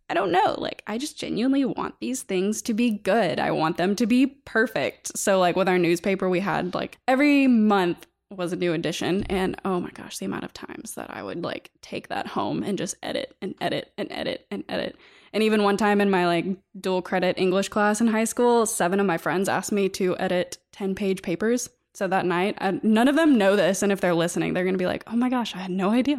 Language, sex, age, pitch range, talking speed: English, female, 10-29, 185-250 Hz, 245 wpm